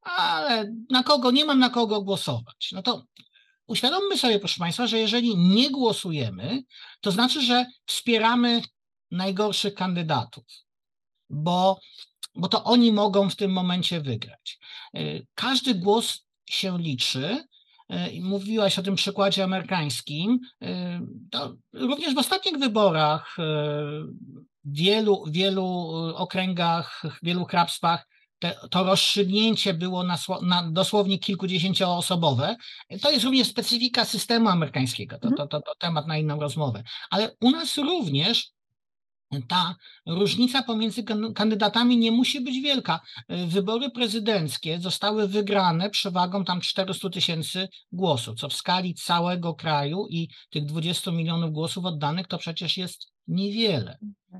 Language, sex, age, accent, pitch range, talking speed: English, male, 50-69, Polish, 165-225 Hz, 120 wpm